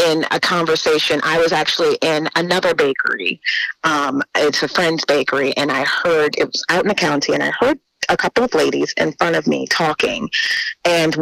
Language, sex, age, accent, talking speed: English, female, 30-49, American, 195 wpm